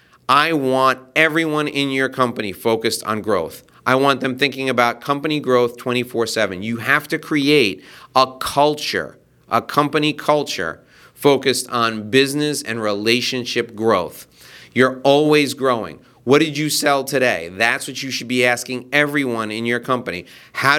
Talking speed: 145 wpm